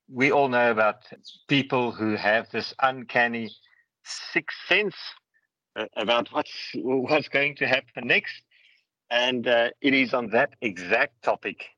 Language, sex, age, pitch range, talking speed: English, male, 50-69, 110-140 Hz, 130 wpm